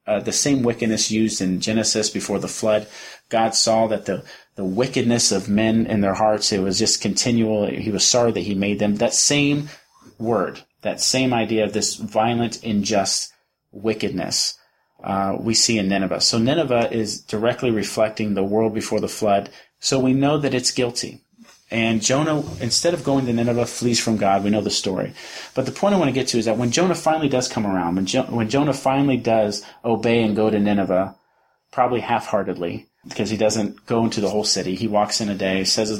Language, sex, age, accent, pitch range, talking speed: English, male, 30-49, American, 105-130 Hz, 205 wpm